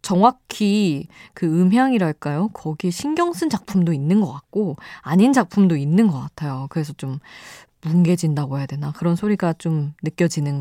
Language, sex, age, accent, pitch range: Korean, female, 20-39, native, 150-210 Hz